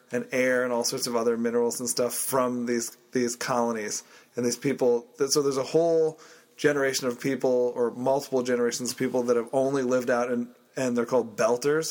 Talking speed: 195 wpm